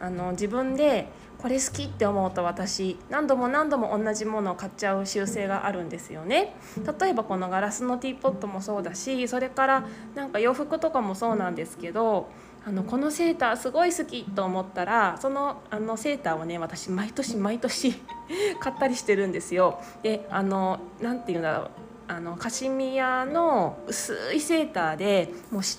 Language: Japanese